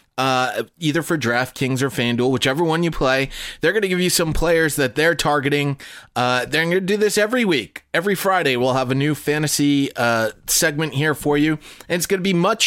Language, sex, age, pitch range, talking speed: English, male, 30-49, 135-185 Hz, 220 wpm